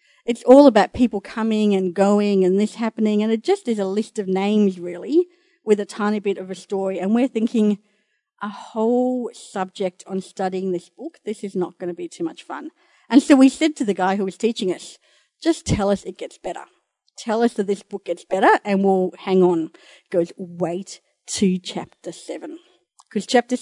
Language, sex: English, female